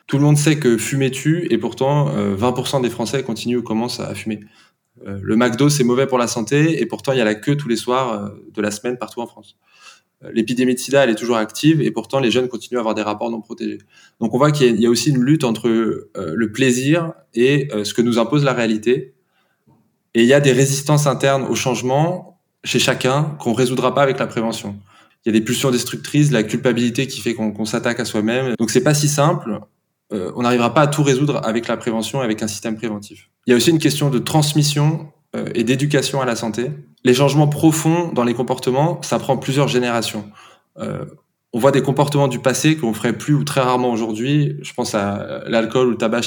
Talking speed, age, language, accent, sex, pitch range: 235 wpm, 20-39, French, French, male, 115-140 Hz